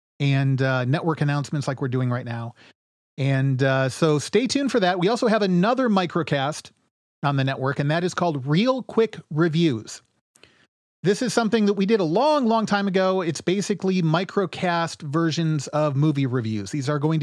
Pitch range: 135-180 Hz